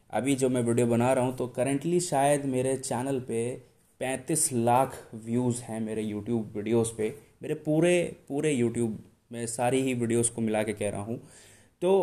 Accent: native